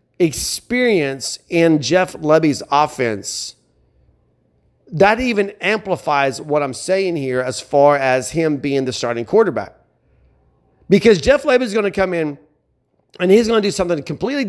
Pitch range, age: 140-195 Hz, 40-59